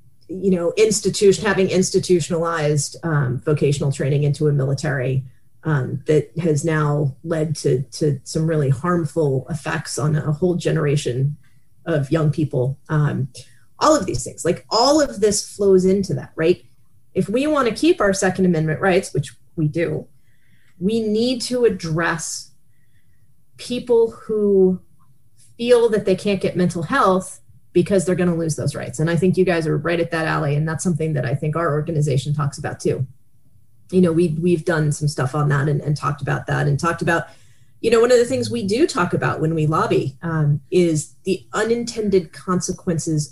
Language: English